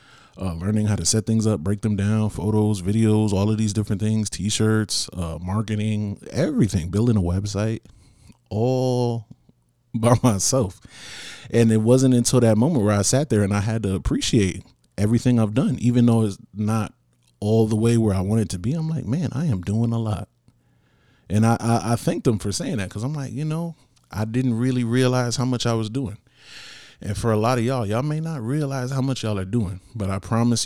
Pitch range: 95-115 Hz